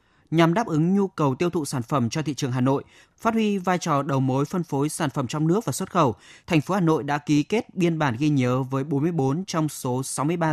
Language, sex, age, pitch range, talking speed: Vietnamese, male, 20-39, 135-175 Hz, 255 wpm